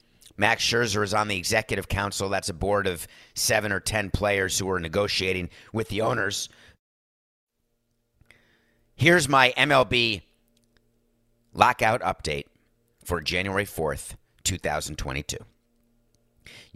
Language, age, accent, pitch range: English, 50-69, American, 95-120 Hz